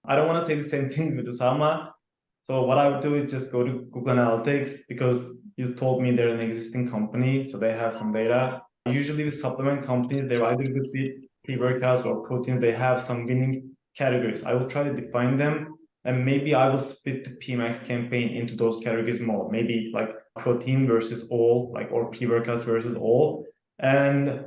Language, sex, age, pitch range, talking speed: English, male, 20-39, 120-140 Hz, 190 wpm